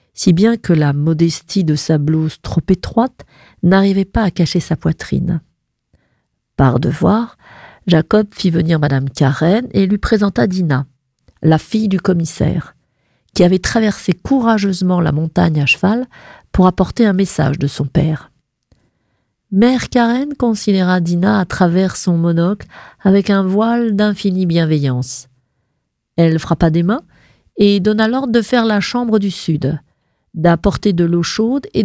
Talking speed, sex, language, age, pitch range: 145 wpm, female, French, 40-59, 155-205 Hz